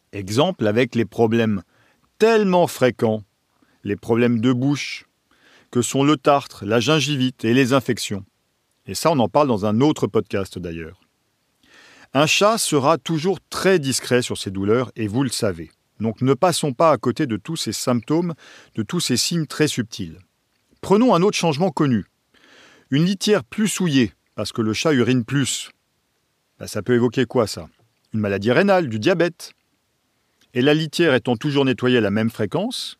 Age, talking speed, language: 40-59, 170 wpm, English